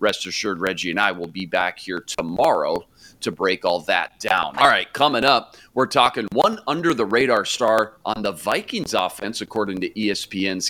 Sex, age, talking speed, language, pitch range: male, 40-59, 175 wpm, English, 110-150 Hz